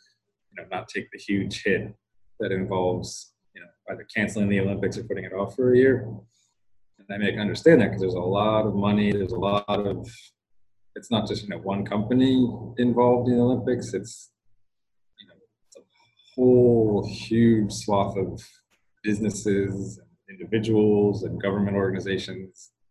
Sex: male